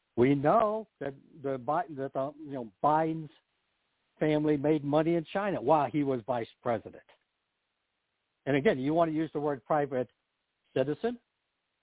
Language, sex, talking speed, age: English, male, 145 wpm, 60-79